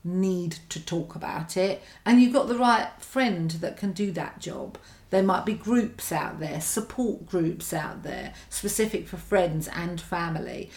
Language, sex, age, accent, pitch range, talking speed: English, female, 40-59, British, 170-215 Hz, 175 wpm